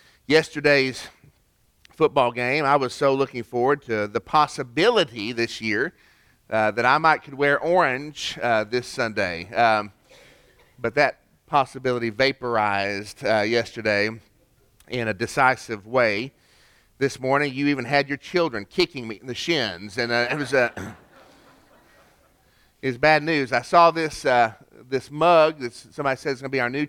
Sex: male